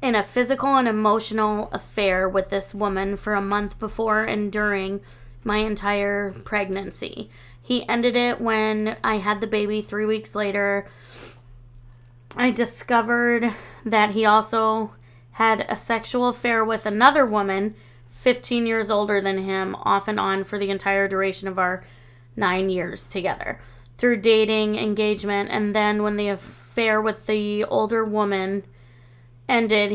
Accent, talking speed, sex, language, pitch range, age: American, 140 wpm, female, English, 190-220 Hz, 20-39